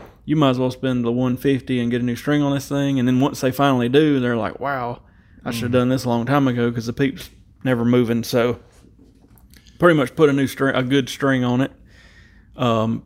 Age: 30-49